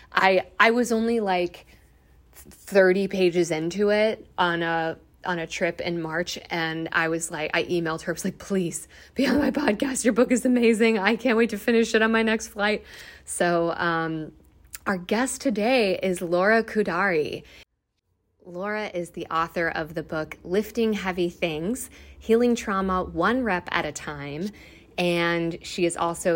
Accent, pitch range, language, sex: American, 165-230 Hz, English, female